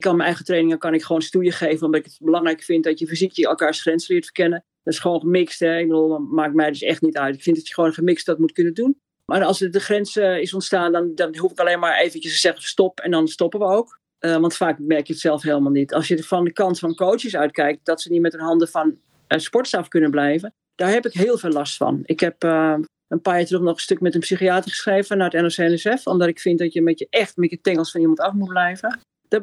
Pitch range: 160-190 Hz